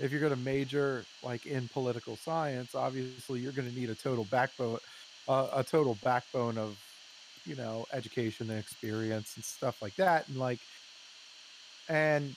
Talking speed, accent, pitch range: 165 wpm, American, 115-140 Hz